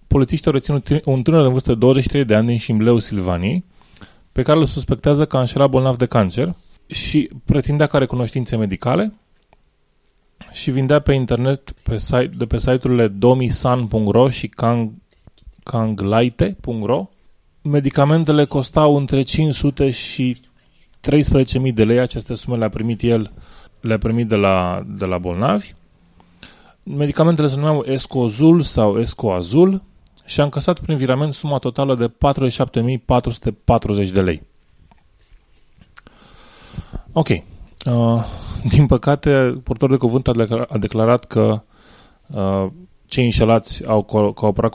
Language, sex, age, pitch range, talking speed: Romanian, male, 20-39, 105-135 Hz, 120 wpm